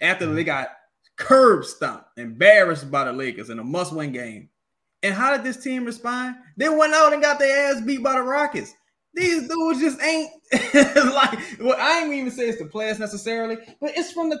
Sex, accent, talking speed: male, American, 200 wpm